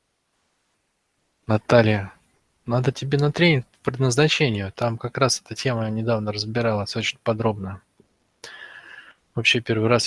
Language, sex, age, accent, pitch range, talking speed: Russian, male, 20-39, native, 110-140 Hz, 120 wpm